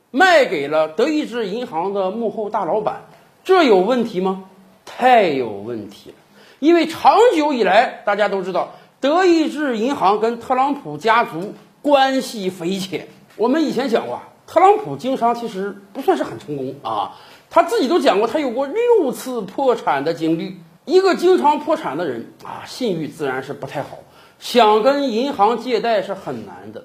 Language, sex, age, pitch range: Chinese, male, 50-69, 210-320 Hz